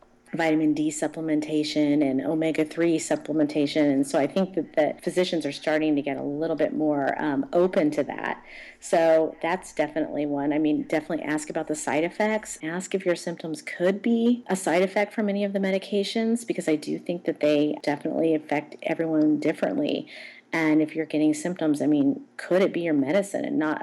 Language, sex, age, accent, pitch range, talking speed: English, female, 40-59, American, 150-180 Hz, 190 wpm